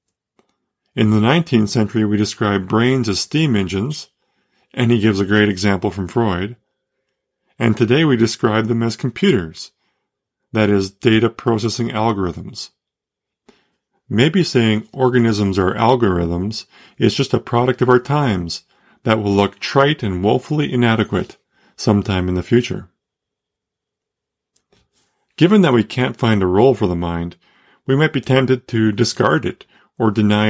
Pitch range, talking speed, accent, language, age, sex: 105-125 Hz, 140 wpm, American, English, 40-59, male